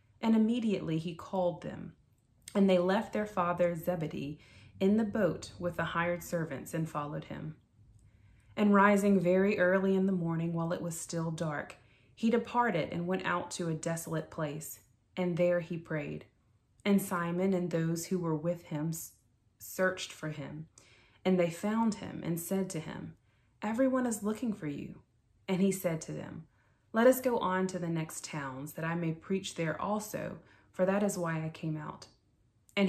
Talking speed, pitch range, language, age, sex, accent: 175 wpm, 150-190 Hz, English, 30-49, female, American